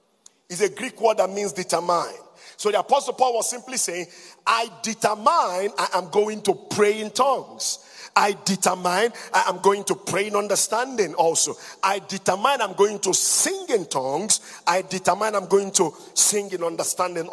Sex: male